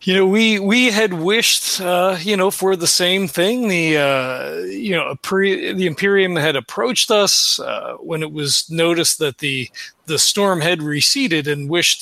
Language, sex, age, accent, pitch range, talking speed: English, male, 40-59, American, 150-185 Hz, 185 wpm